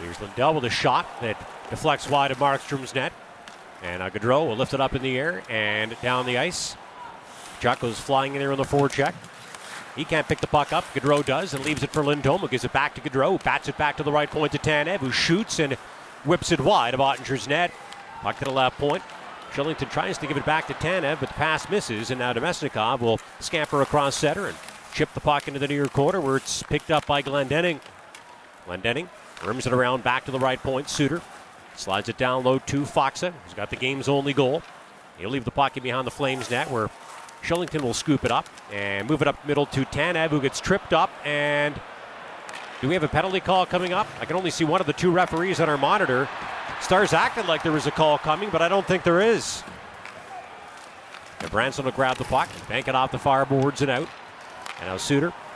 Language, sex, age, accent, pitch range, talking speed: English, male, 40-59, American, 130-155 Hz, 225 wpm